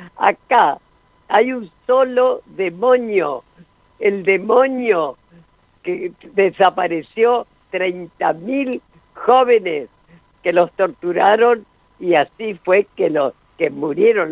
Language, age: Spanish, 50-69